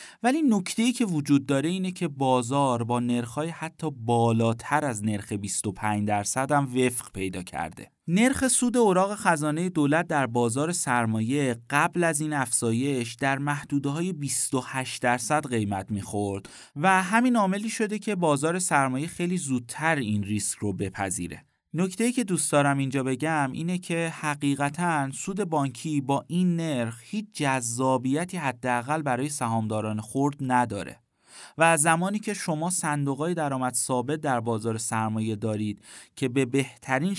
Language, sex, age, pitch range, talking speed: Persian, male, 30-49, 120-165 Hz, 140 wpm